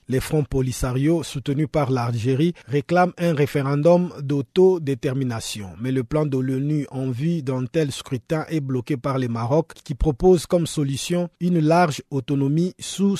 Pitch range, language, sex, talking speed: 135-165 Hz, French, male, 150 wpm